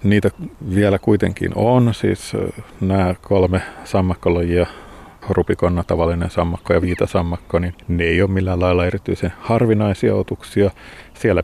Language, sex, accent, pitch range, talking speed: Finnish, male, native, 90-100 Hz, 115 wpm